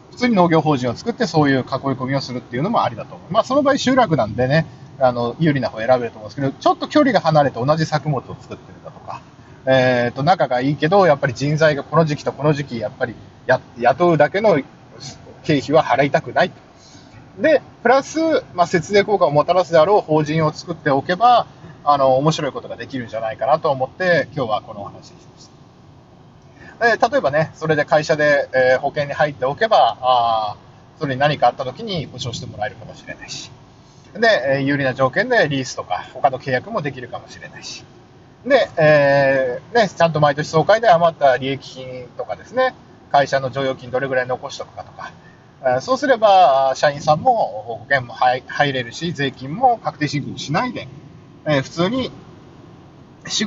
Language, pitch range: Japanese, 130-175 Hz